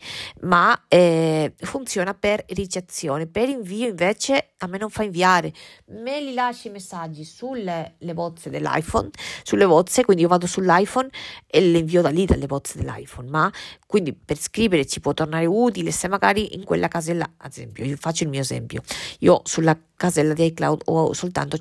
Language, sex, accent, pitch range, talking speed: Italian, female, native, 160-195 Hz, 175 wpm